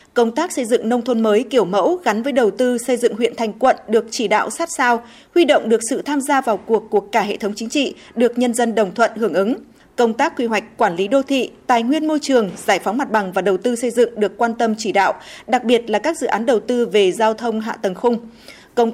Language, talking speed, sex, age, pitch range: Vietnamese, 270 wpm, female, 20-39, 220-275 Hz